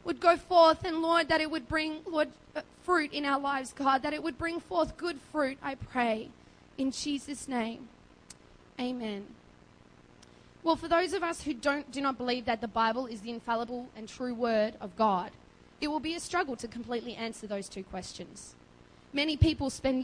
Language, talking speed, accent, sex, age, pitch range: English, 190 wpm, Australian, female, 20-39, 215-275 Hz